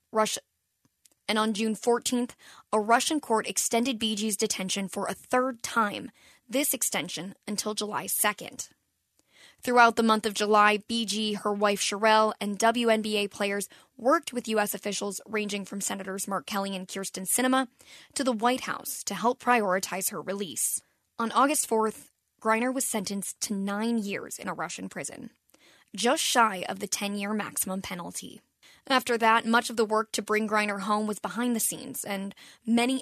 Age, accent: 10-29, American